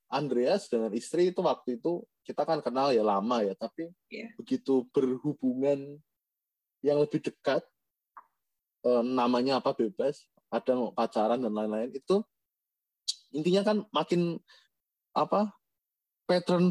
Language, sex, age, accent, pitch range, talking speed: Indonesian, male, 20-39, native, 130-180 Hz, 110 wpm